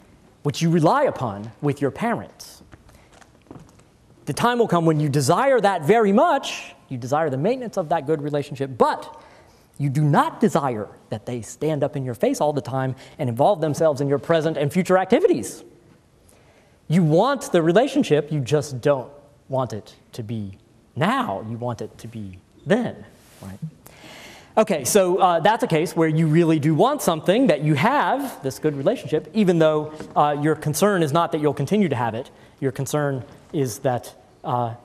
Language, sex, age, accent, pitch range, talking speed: English, male, 30-49, American, 140-190 Hz, 180 wpm